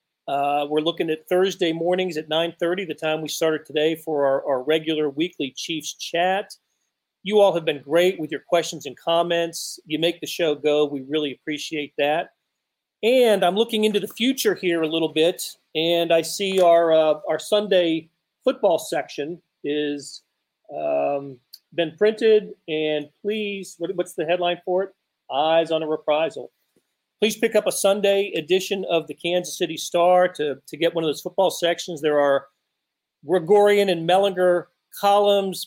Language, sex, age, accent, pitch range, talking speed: English, male, 40-59, American, 150-185 Hz, 165 wpm